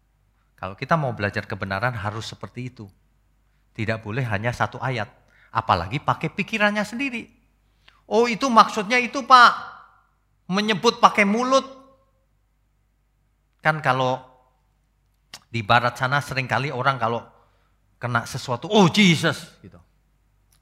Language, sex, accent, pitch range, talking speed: Indonesian, male, native, 110-165 Hz, 110 wpm